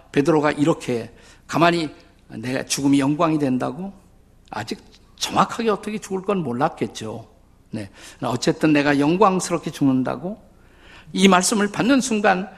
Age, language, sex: 50-69, Korean, male